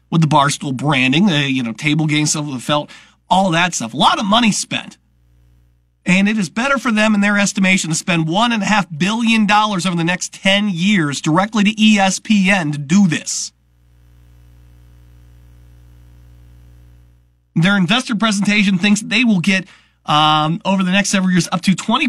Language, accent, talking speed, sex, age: English, American, 175 wpm, male, 40-59